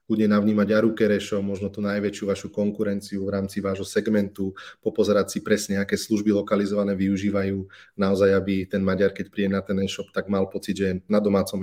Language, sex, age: Slovak, male, 30-49